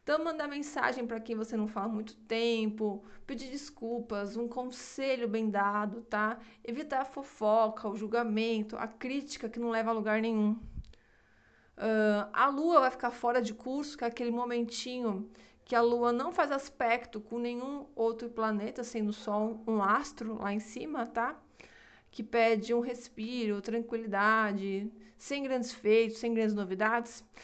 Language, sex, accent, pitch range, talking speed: Portuguese, female, Brazilian, 210-240 Hz, 155 wpm